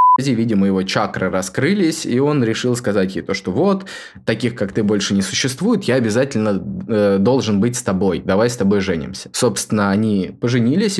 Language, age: Russian, 20-39